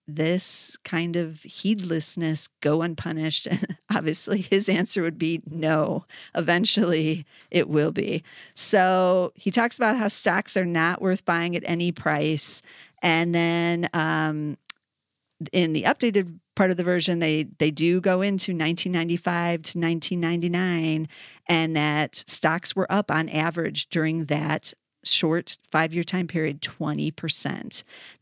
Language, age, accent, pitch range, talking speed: English, 40-59, American, 160-180 Hz, 130 wpm